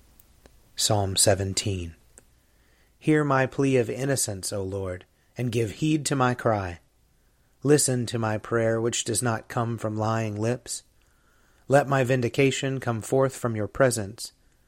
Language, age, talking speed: English, 30-49, 140 wpm